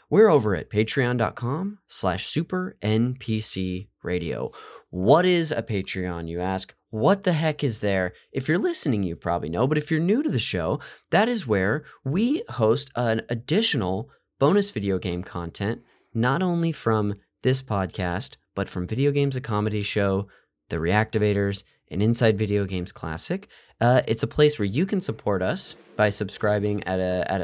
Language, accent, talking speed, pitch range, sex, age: English, American, 160 wpm, 100-150 Hz, male, 20-39